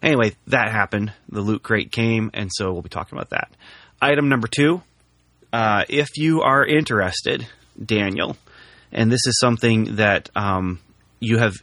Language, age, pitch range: English, 30-49, 95-120 Hz